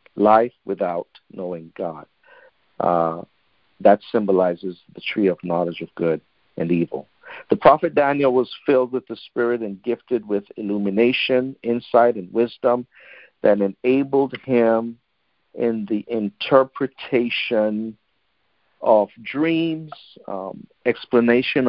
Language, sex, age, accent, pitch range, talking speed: English, male, 50-69, American, 100-130 Hz, 110 wpm